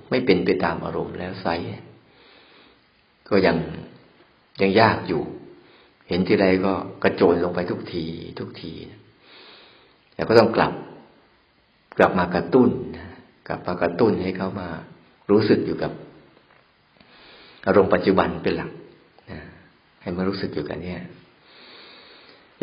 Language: Thai